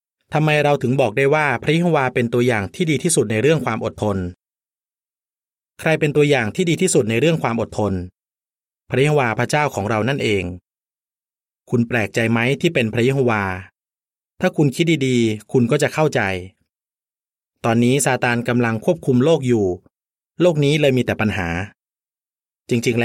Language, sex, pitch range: Thai, male, 110-150 Hz